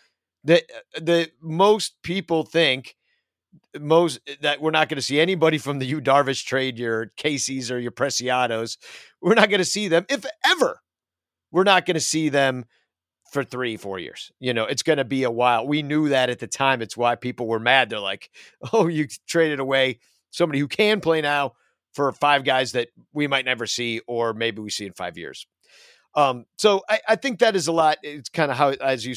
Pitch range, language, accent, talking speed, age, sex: 115-160 Hz, English, American, 210 wpm, 50-69, male